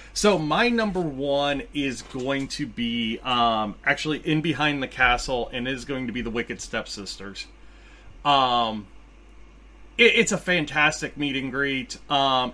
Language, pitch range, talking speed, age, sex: English, 125-160 Hz, 145 wpm, 30-49, male